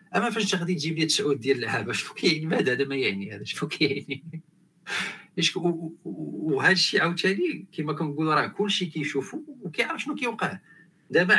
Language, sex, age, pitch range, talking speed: Arabic, male, 40-59, 135-185 Hz, 150 wpm